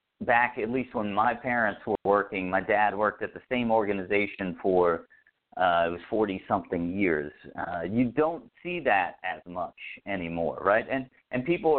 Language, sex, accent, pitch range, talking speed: English, male, American, 95-130 Hz, 170 wpm